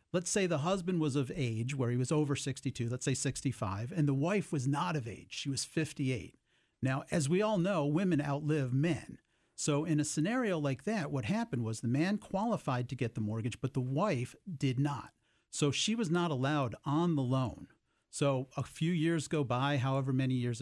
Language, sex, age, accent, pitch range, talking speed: English, male, 40-59, American, 130-160 Hz, 205 wpm